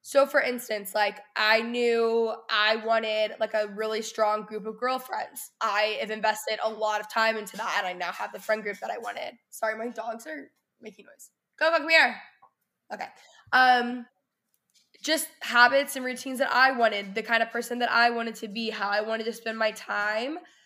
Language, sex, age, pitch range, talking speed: English, female, 10-29, 220-270 Hz, 200 wpm